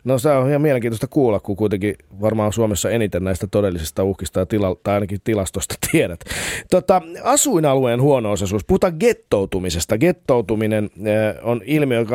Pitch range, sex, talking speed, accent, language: 100-125 Hz, male, 140 wpm, native, Finnish